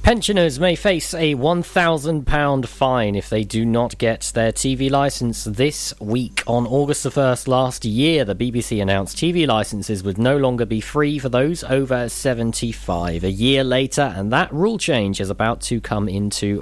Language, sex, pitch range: English, male, 105-140 Hz